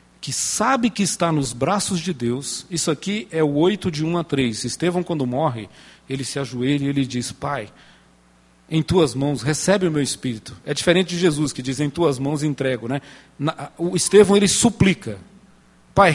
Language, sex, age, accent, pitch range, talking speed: Portuguese, male, 40-59, Brazilian, 115-175 Hz, 185 wpm